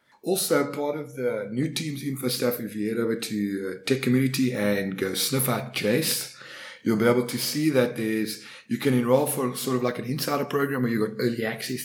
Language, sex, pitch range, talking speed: English, male, 110-130 Hz, 220 wpm